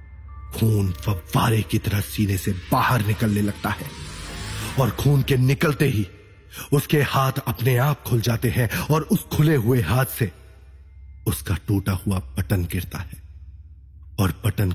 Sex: male